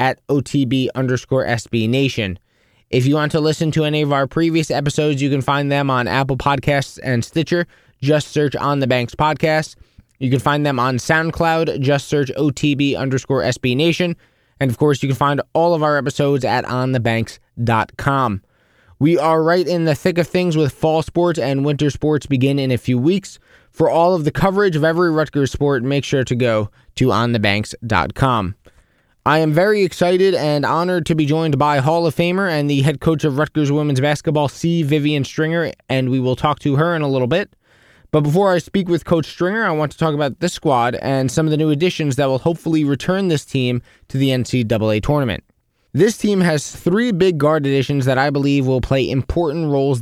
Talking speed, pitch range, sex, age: 200 wpm, 130-160 Hz, male, 20-39